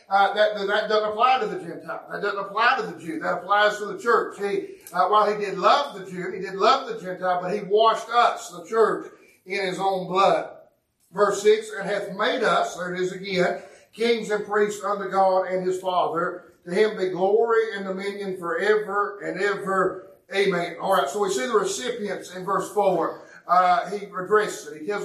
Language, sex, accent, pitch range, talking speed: English, male, American, 185-220 Hz, 205 wpm